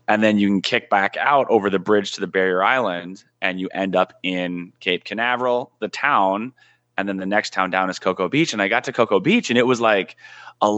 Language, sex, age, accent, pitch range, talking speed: English, male, 30-49, American, 95-120 Hz, 240 wpm